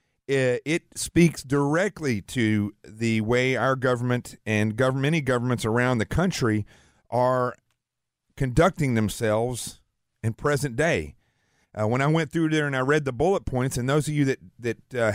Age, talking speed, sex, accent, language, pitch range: 40-59, 160 wpm, male, American, English, 115-145 Hz